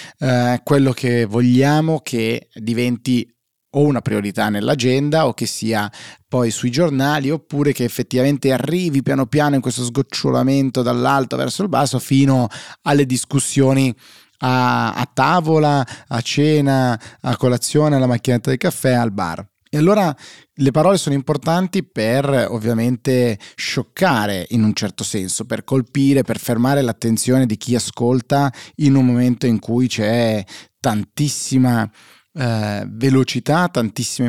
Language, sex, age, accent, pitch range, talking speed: Italian, male, 30-49, native, 115-135 Hz, 135 wpm